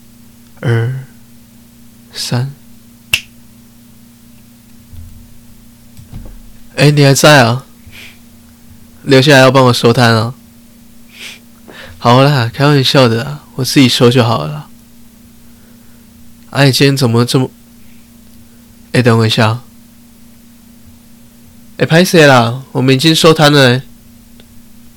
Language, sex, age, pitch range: Chinese, male, 20-39, 115-125 Hz